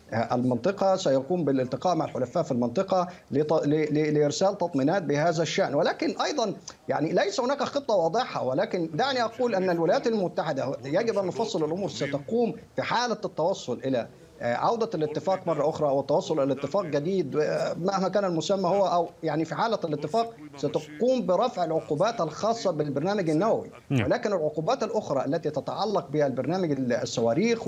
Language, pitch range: Arabic, 145-190 Hz